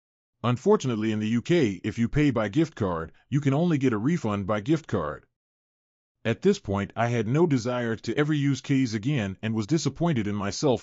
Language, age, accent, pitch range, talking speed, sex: English, 30-49, American, 110-140 Hz, 200 wpm, male